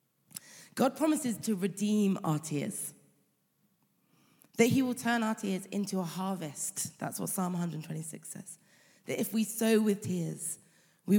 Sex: female